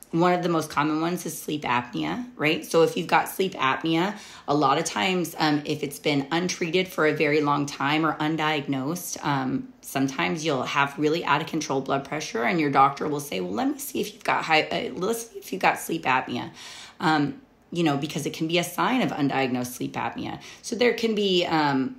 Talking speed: 220 wpm